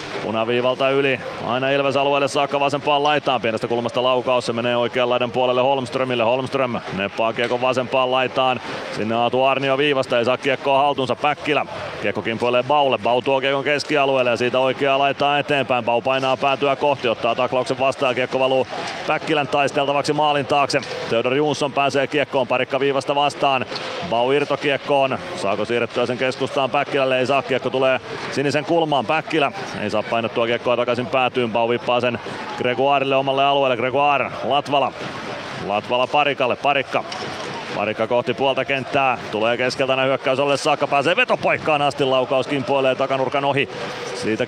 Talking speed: 150 wpm